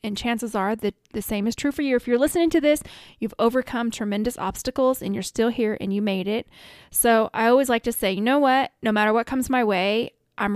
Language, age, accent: English, 20-39, American